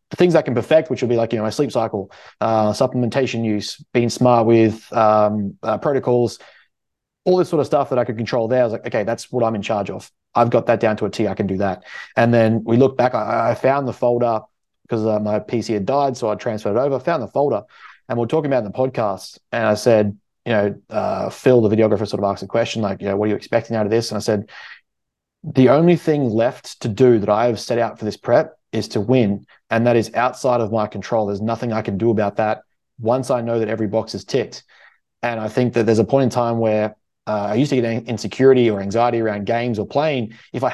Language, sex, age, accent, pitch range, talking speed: English, male, 20-39, Australian, 110-125 Hz, 260 wpm